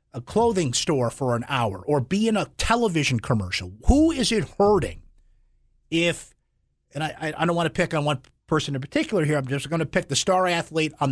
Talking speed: 210 wpm